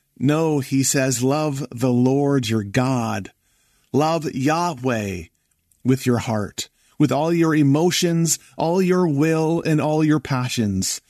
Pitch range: 120-150 Hz